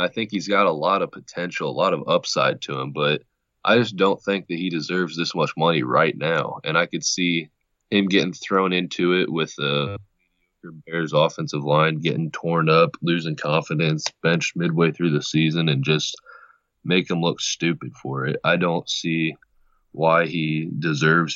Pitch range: 80-90 Hz